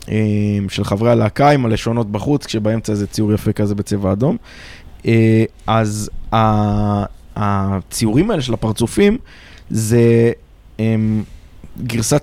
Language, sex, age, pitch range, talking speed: Hebrew, male, 20-39, 105-120 Hz, 100 wpm